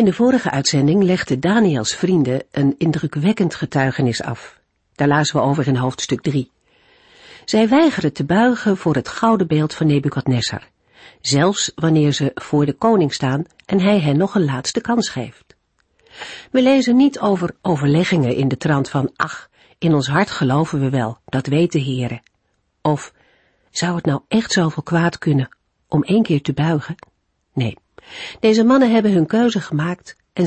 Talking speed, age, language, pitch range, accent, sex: 165 wpm, 50-69, Dutch, 140-210 Hz, Dutch, female